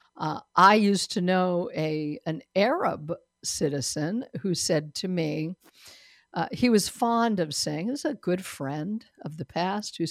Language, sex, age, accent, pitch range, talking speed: English, female, 50-69, American, 160-210 Hz, 165 wpm